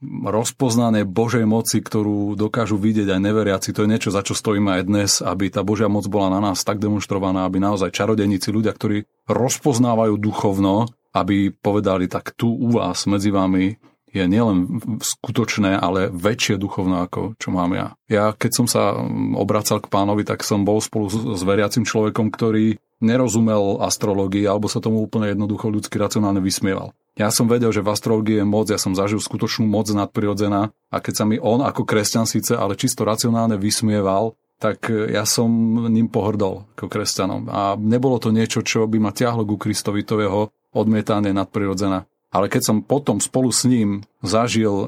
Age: 30-49